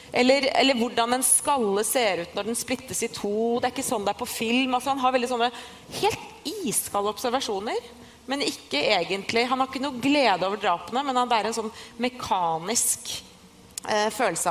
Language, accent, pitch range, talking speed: English, Swedish, 215-260 Hz, 190 wpm